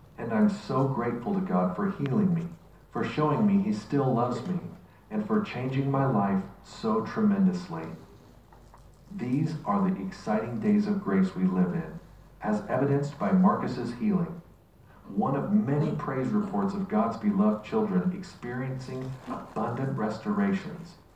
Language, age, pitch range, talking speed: English, 50-69, 130-205 Hz, 140 wpm